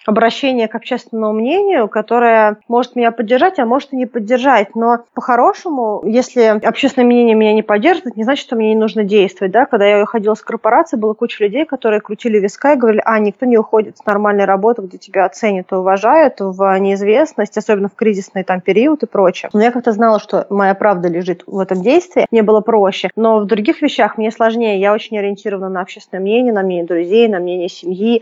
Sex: female